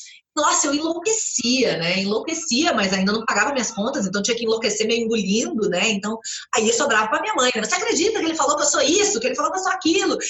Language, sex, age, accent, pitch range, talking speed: Portuguese, female, 30-49, Brazilian, 200-315 Hz, 245 wpm